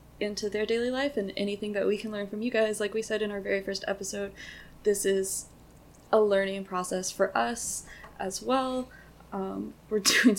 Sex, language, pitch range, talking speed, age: female, English, 190-215 Hz, 190 wpm, 20-39